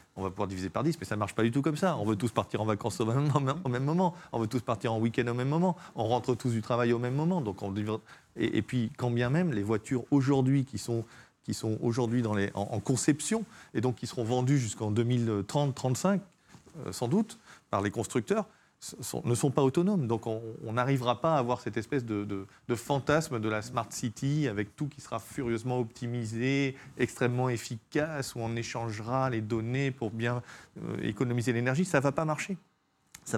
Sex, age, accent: male, 40-59, French